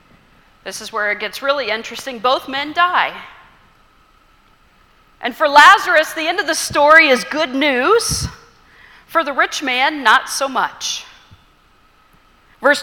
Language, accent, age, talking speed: English, American, 40-59, 135 wpm